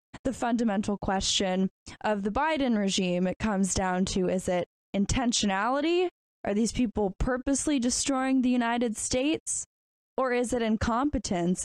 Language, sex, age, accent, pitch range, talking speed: English, female, 10-29, American, 195-240 Hz, 135 wpm